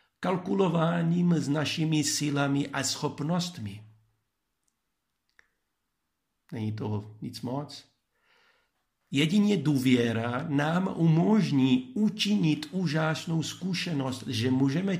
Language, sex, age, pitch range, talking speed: Czech, male, 50-69, 115-145 Hz, 75 wpm